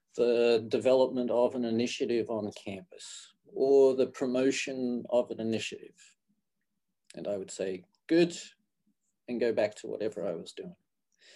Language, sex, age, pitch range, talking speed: English, male, 40-59, 120-160 Hz, 135 wpm